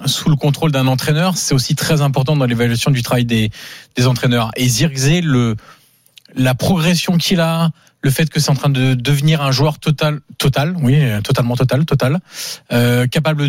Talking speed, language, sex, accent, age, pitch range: 180 wpm, French, male, French, 20-39, 130-160 Hz